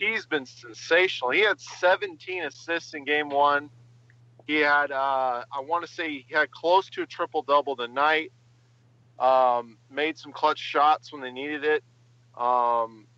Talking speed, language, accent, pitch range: 165 wpm, English, American, 120-155 Hz